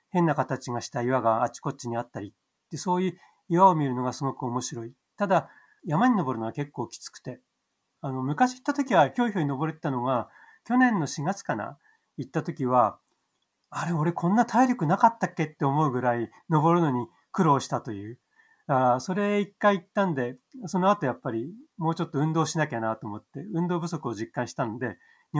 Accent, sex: native, male